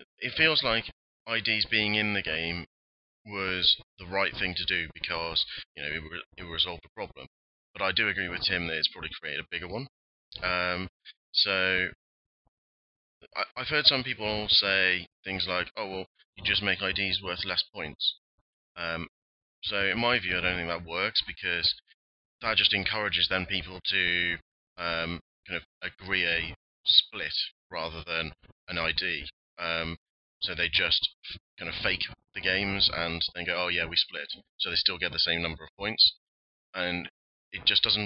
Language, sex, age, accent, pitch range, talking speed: English, male, 30-49, British, 85-100 Hz, 175 wpm